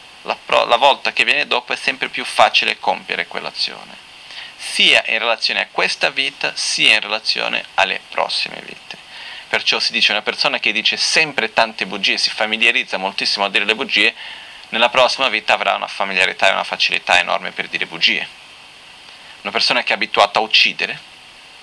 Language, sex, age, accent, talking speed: Italian, male, 30-49, native, 170 wpm